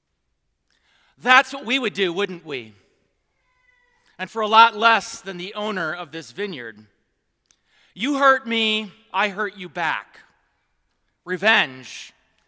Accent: American